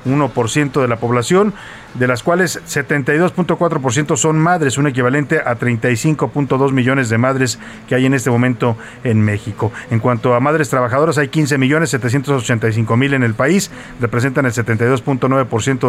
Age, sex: 40-59, male